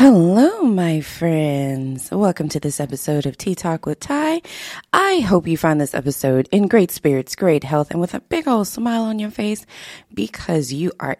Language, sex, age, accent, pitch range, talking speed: English, female, 20-39, American, 145-220 Hz, 190 wpm